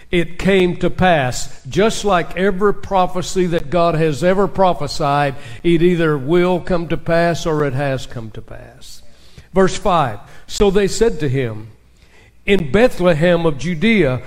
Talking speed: 150 wpm